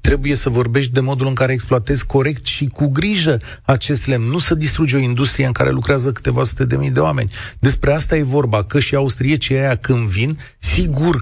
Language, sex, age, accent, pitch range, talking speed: Romanian, male, 40-59, native, 110-155 Hz, 215 wpm